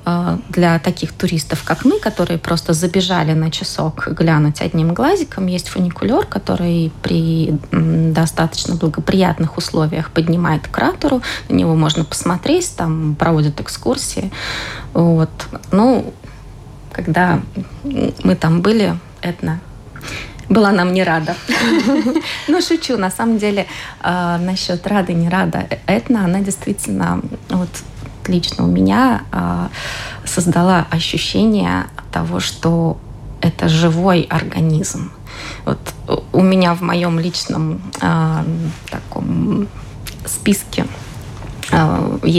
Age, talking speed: 20-39, 105 wpm